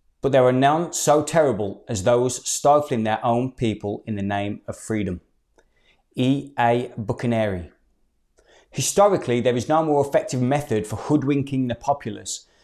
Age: 30-49